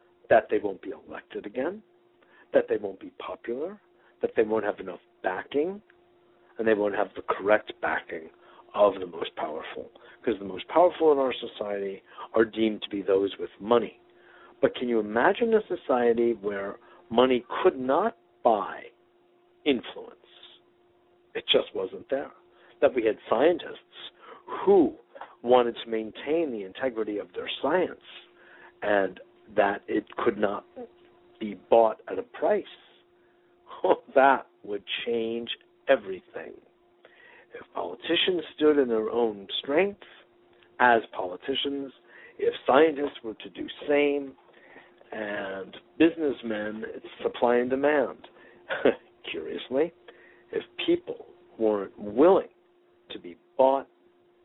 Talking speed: 125 wpm